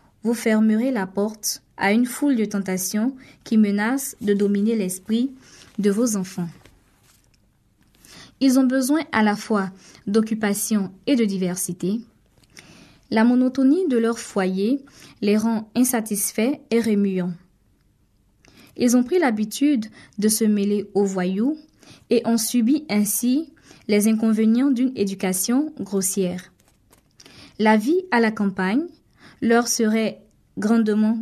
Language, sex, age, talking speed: French, female, 20-39, 120 wpm